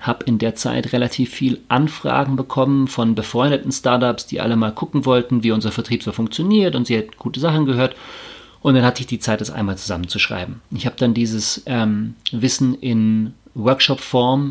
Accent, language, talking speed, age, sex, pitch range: German, German, 180 wpm, 40-59, male, 110-125 Hz